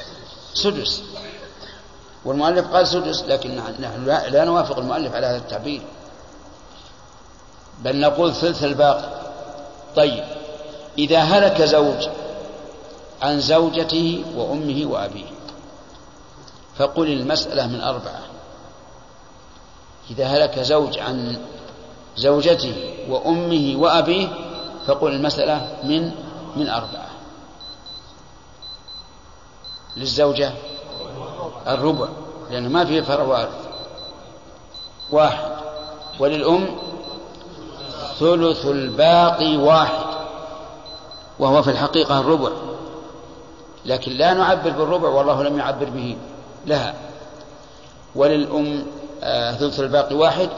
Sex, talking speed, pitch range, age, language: male, 80 wpm, 140-160 Hz, 60-79, Arabic